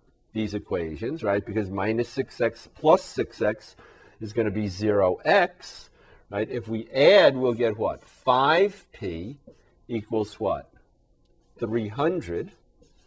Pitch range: 105-125 Hz